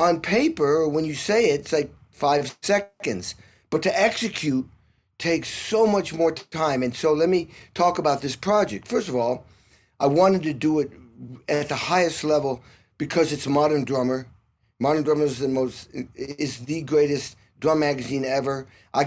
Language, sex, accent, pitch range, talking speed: English, male, American, 130-160 Hz, 170 wpm